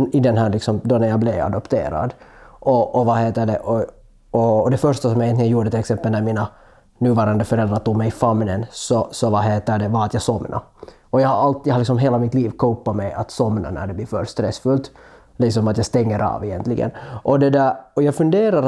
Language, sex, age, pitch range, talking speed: Swedish, male, 20-39, 110-130 Hz, 225 wpm